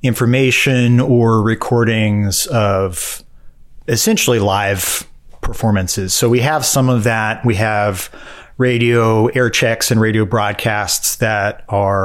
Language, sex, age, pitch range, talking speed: English, male, 30-49, 105-125 Hz, 115 wpm